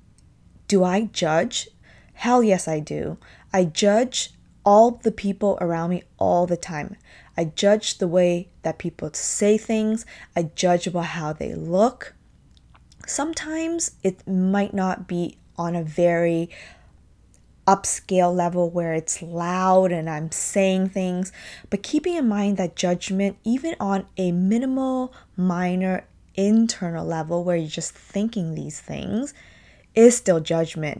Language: English